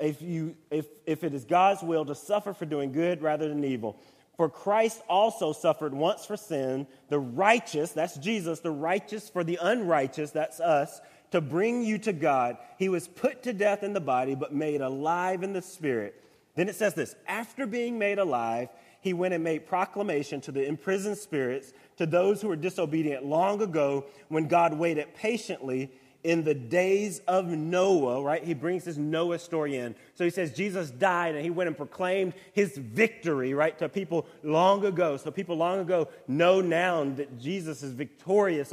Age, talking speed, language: 30-49, 185 wpm, English